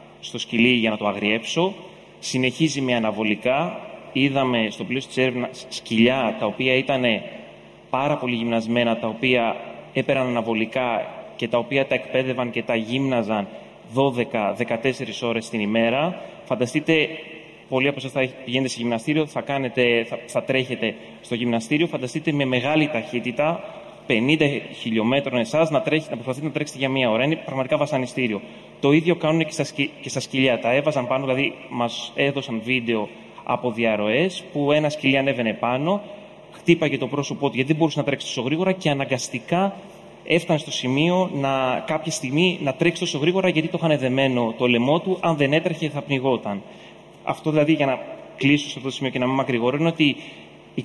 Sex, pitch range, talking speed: male, 120-150 Hz, 170 wpm